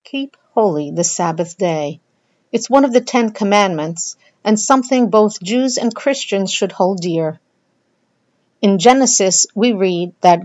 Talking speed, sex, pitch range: 145 wpm, female, 185-245 Hz